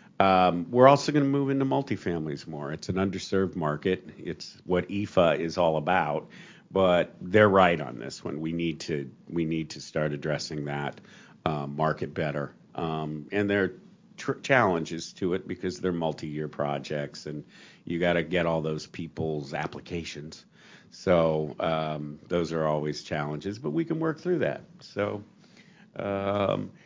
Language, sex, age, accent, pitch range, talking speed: English, male, 50-69, American, 80-100 Hz, 160 wpm